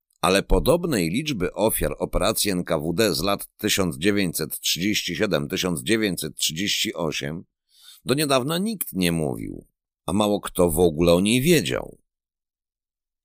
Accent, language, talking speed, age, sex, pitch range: native, Polish, 100 wpm, 50-69, male, 85-110 Hz